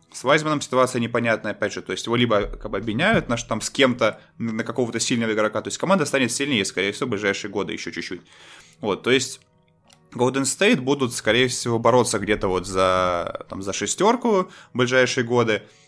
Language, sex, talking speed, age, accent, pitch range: Russian, male, 195 wpm, 20-39, native, 110-145 Hz